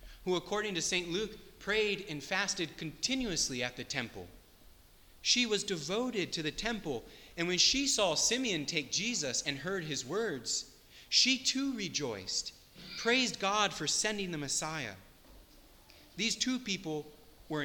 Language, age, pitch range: English, 30-49, 135-200 Hz